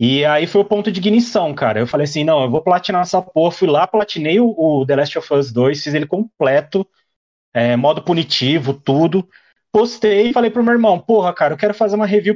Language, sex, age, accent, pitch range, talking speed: Portuguese, male, 30-49, Brazilian, 150-240 Hz, 230 wpm